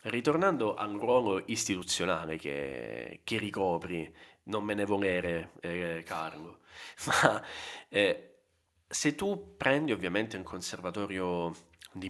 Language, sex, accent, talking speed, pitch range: Italian, male, native, 110 wpm, 85-110 Hz